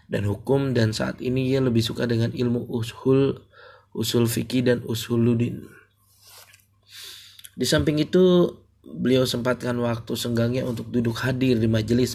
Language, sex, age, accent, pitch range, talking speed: Indonesian, male, 20-39, native, 110-125 Hz, 140 wpm